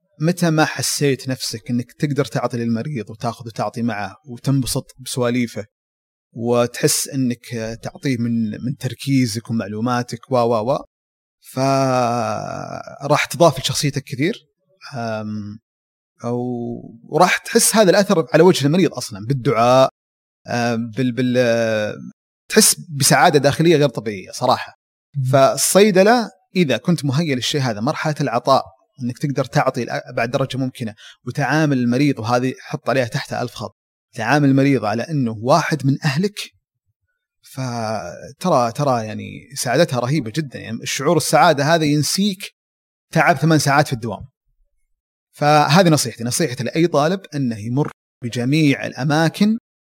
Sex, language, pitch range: male, Arabic, 120-155 Hz